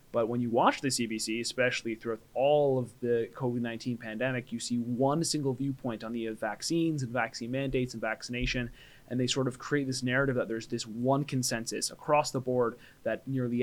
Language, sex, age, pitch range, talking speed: English, male, 20-39, 120-145 Hz, 190 wpm